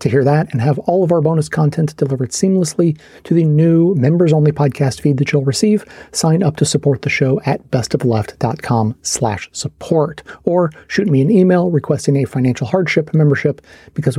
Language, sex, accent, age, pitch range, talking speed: English, male, American, 30-49, 135-160 Hz, 175 wpm